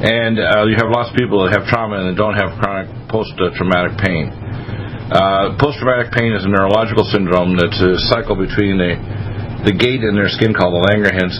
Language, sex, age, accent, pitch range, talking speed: English, male, 50-69, American, 95-115 Hz, 190 wpm